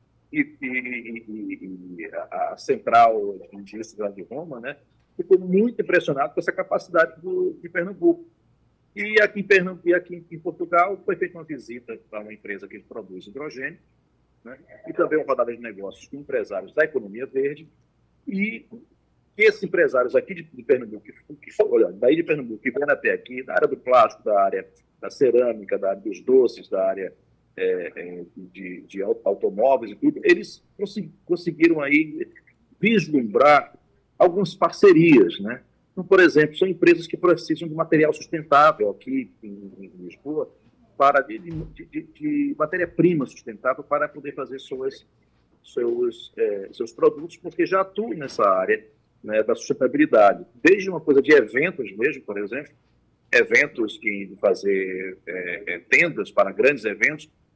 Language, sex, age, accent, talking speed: Portuguese, male, 40-59, Brazilian, 150 wpm